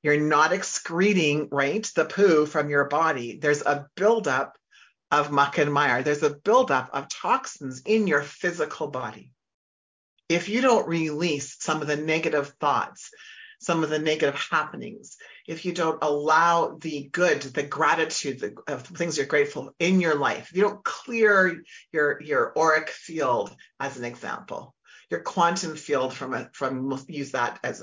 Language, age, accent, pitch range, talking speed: English, 40-59, American, 145-190 Hz, 155 wpm